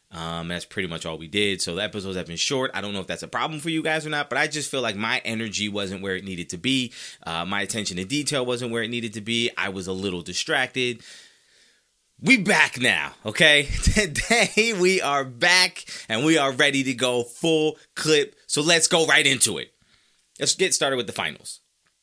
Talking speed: 225 wpm